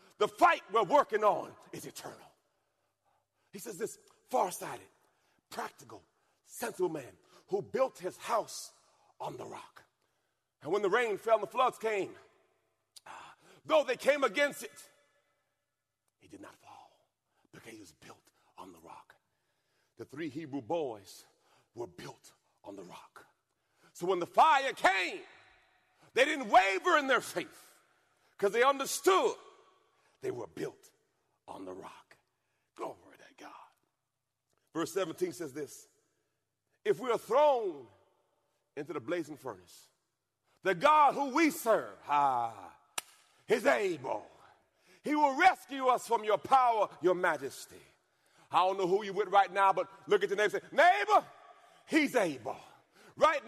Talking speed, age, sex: 145 wpm, 40-59, male